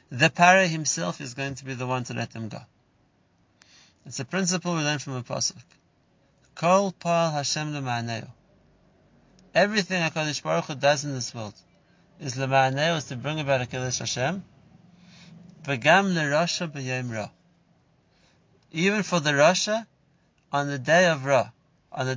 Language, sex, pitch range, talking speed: English, male, 130-165 Hz, 140 wpm